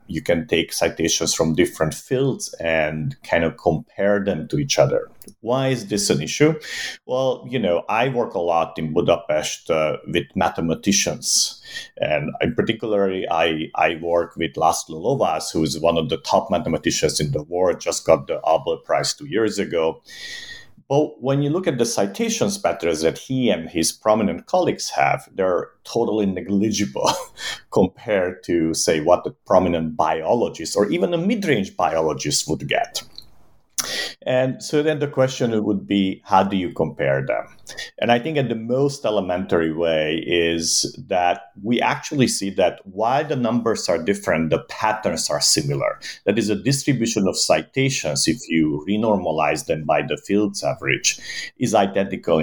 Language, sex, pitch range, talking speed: English, male, 80-130 Hz, 160 wpm